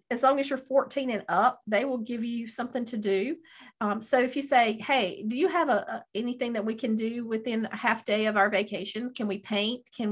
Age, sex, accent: 40-59, female, American